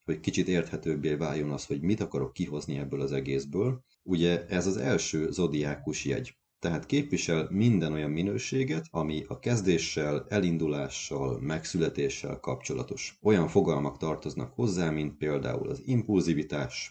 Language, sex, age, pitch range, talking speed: Hungarian, male, 30-49, 75-100 Hz, 130 wpm